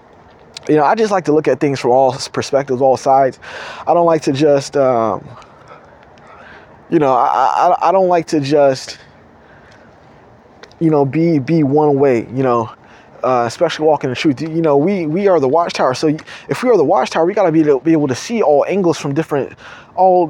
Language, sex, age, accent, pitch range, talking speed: English, male, 20-39, American, 140-180 Hz, 200 wpm